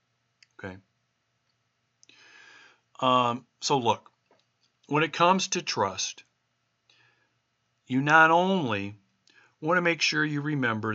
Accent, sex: American, male